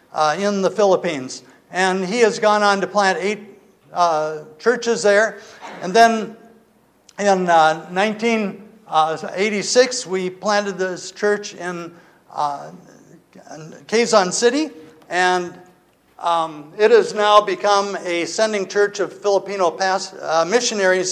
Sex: male